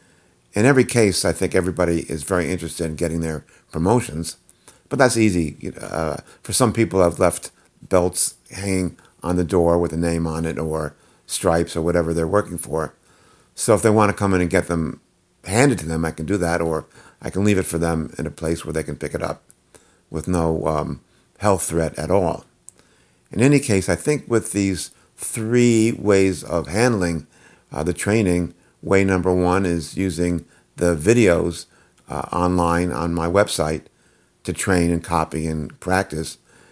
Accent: American